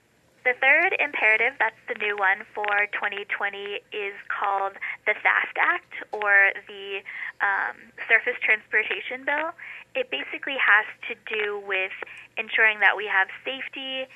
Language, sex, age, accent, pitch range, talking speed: English, female, 10-29, American, 200-240 Hz, 130 wpm